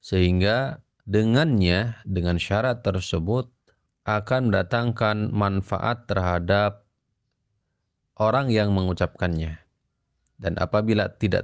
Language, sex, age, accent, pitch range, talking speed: Indonesian, male, 30-49, native, 90-115 Hz, 80 wpm